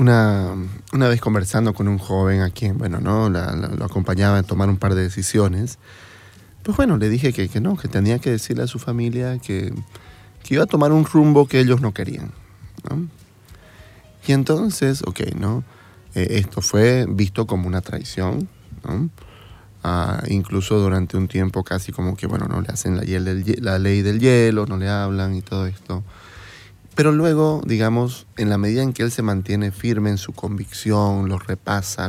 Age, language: 30-49, Spanish